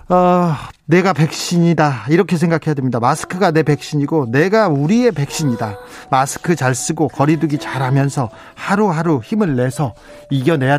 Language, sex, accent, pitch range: Korean, male, native, 140-180 Hz